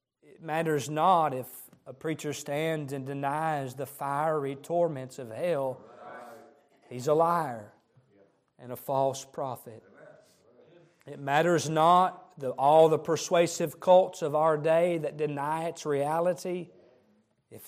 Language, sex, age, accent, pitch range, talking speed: English, male, 40-59, American, 135-180 Hz, 120 wpm